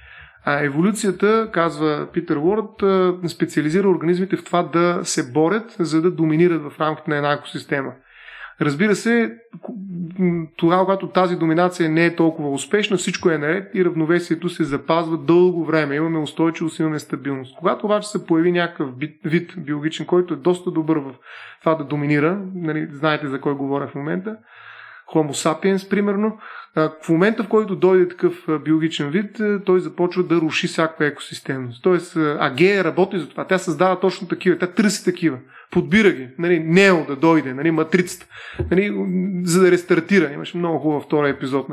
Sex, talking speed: male, 160 wpm